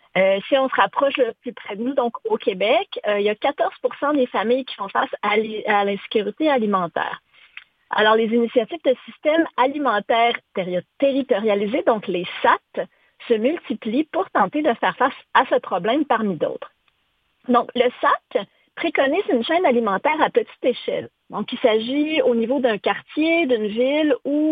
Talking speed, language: 165 wpm, French